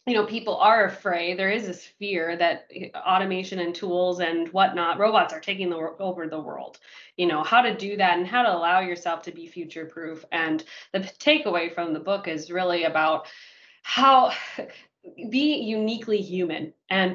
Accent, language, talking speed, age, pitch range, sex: American, English, 175 wpm, 20-39, 175-230 Hz, female